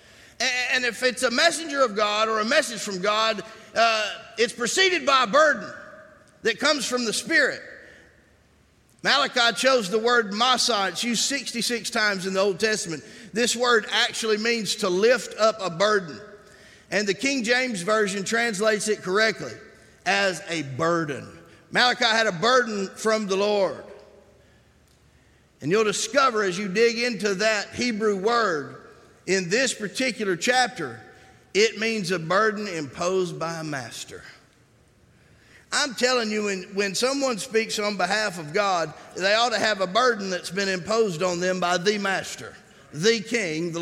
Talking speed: 155 wpm